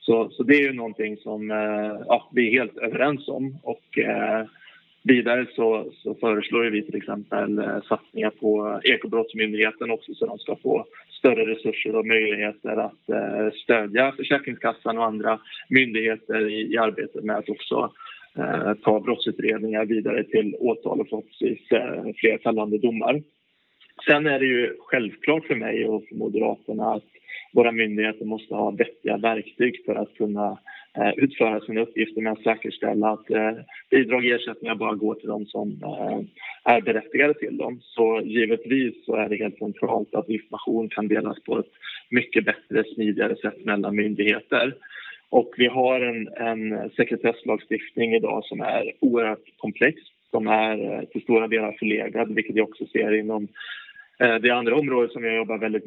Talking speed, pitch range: 155 wpm, 110-120 Hz